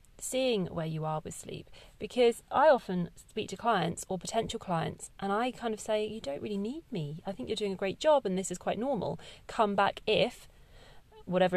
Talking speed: 215 wpm